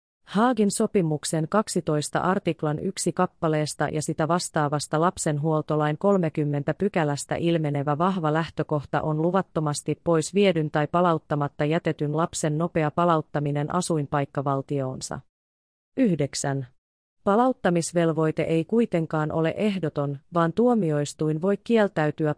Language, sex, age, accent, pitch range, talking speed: Finnish, female, 30-49, native, 150-175 Hz, 95 wpm